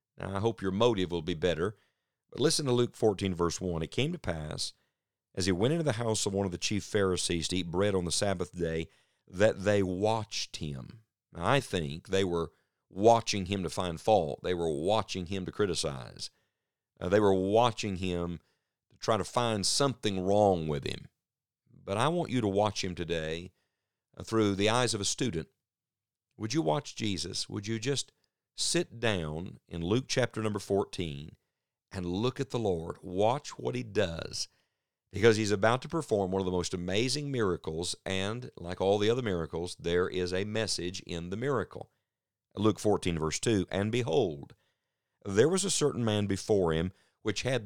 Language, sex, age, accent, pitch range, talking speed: English, male, 50-69, American, 90-115 Hz, 185 wpm